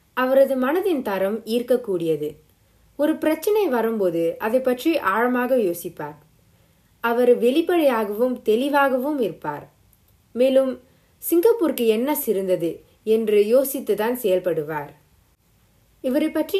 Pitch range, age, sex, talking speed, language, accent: 180-275 Hz, 20-39, female, 85 wpm, Tamil, native